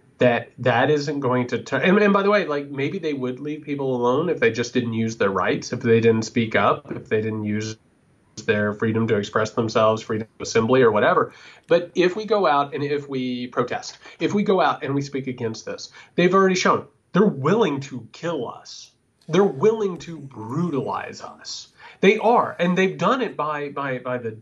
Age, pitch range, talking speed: 30-49, 125-205 Hz, 210 wpm